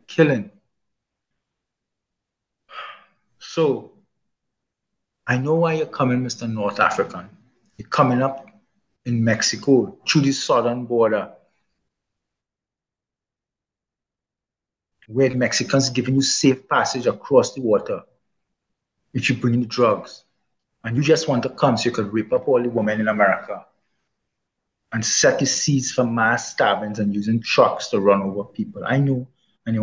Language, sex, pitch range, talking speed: English, male, 110-130 Hz, 135 wpm